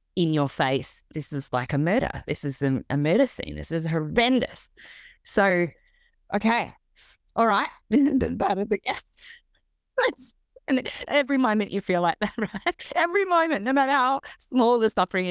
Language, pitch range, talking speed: English, 145-210 Hz, 160 wpm